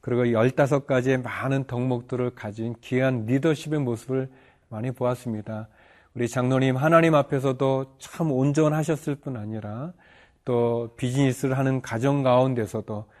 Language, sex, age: Korean, male, 40-59